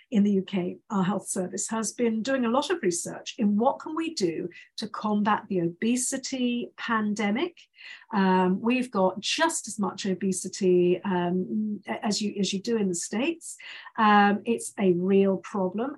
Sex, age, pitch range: female, 50-69, 185-225 Hz